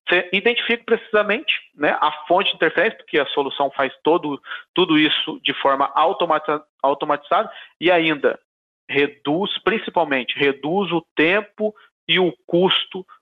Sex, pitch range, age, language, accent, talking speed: male, 150-220 Hz, 40-59, Portuguese, Brazilian, 120 wpm